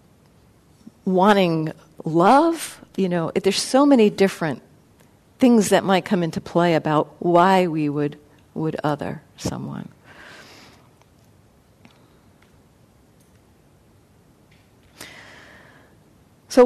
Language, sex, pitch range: English, female, 170-235 Hz